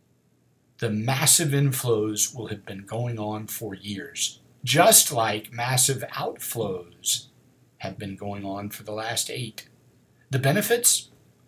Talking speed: 125 wpm